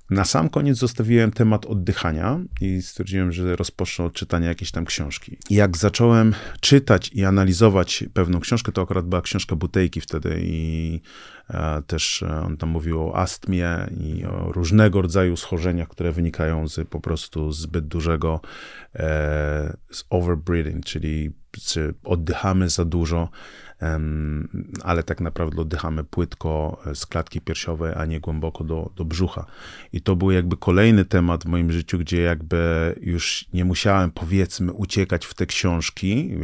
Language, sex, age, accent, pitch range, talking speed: Polish, male, 30-49, native, 85-95 Hz, 150 wpm